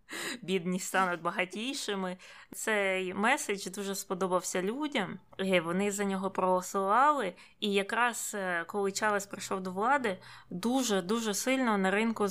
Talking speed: 110 wpm